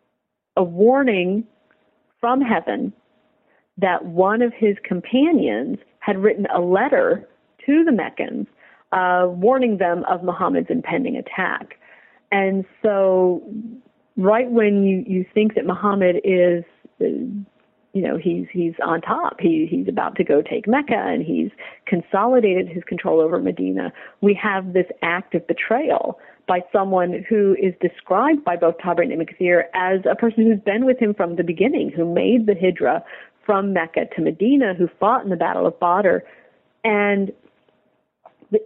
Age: 40-59